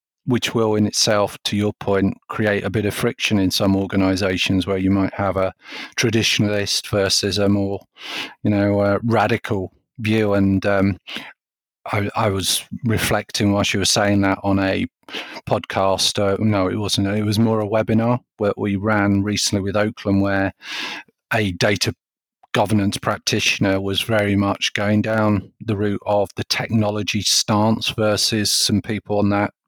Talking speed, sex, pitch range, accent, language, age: 160 wpm, male, 100-110 Hz, British, English, 40-59